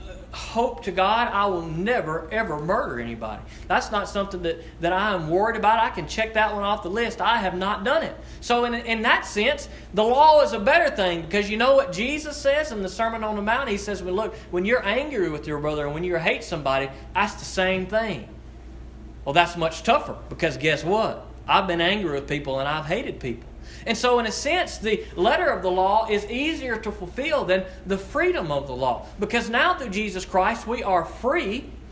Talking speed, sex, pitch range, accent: 220 wpm, male, 165-225 Hz, American